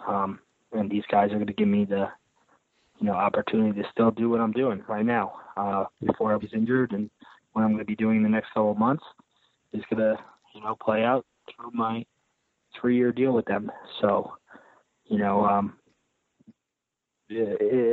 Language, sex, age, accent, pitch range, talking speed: English, male, 20-39, American, 105-120 Hz, 185 wpm